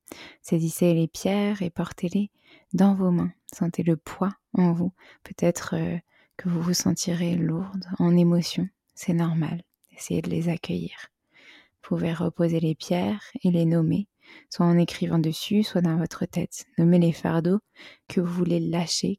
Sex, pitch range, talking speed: female, 170-190 Hz, 155 wpm